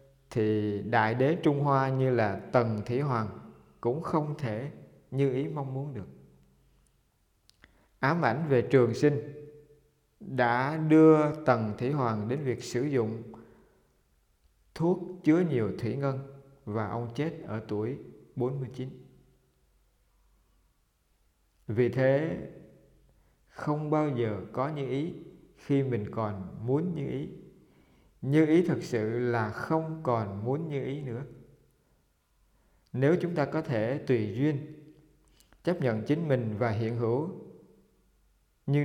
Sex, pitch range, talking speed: male, 110-145 Hz, 130 wpm